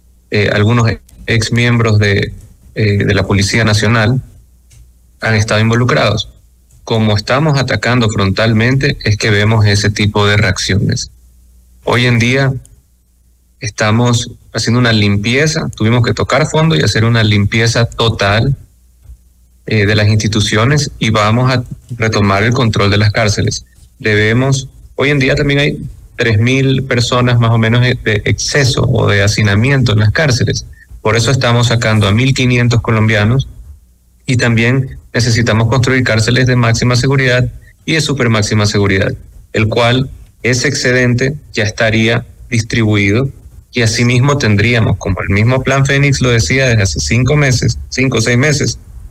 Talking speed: 140 wpm